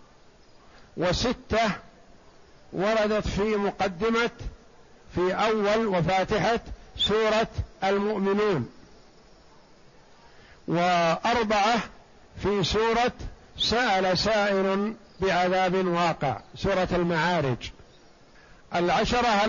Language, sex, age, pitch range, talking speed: Arabic, male, 60-79, 185-210 Hz, 60 wpm